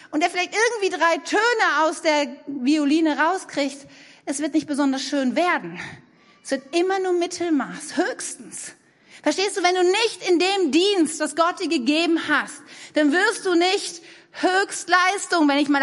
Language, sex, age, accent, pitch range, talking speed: German, female, 40-59, German, 280-360 Hz, 165 wpm